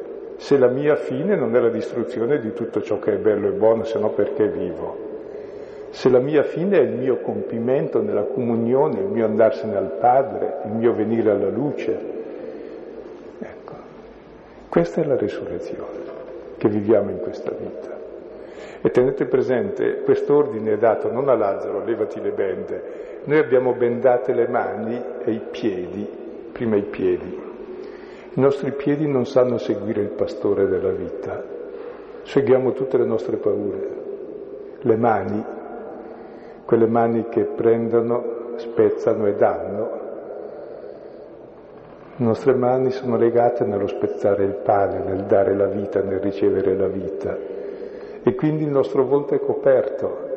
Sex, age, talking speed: male, 50-69, 145 wpm